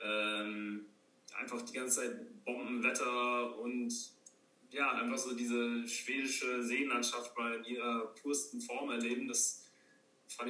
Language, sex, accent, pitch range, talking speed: German, male, German, 115-135 Hz, 120 wpm